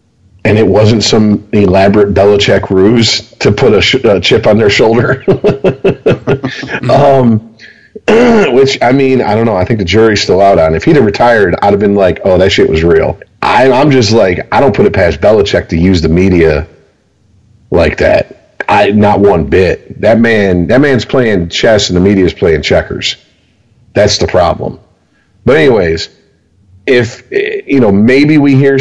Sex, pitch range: male, 95-130 Hz